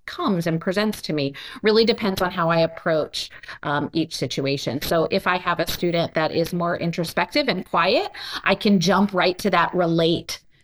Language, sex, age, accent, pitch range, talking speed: English, female, 30-49, American, 165-210 Hz, 185 wpm